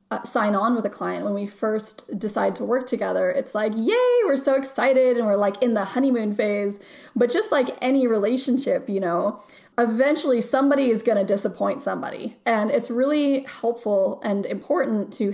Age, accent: 20-39, American